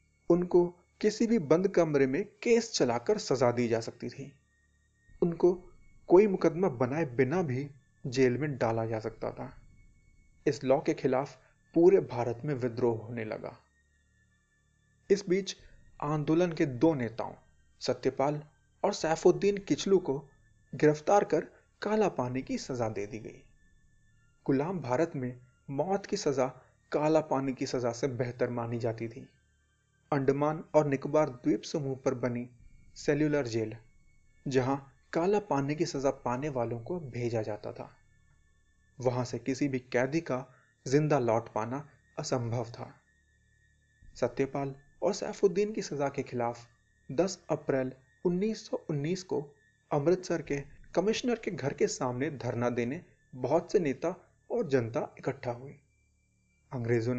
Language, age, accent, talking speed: Hindi, 30-49, native, 135 wpm